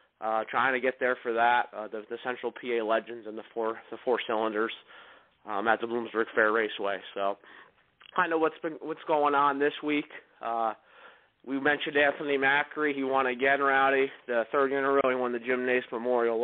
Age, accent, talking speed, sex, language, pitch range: 30-49, American, 195 wpm, male, English, 120-145 Hz